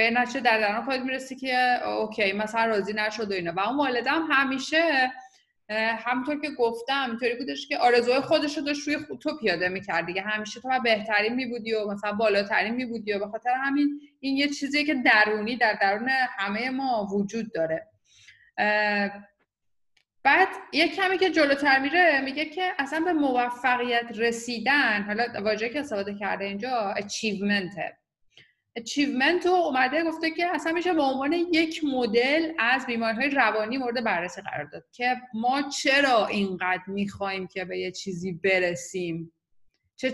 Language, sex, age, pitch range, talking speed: Persian, female, 30-49, 205-270 Hz, 145 wpm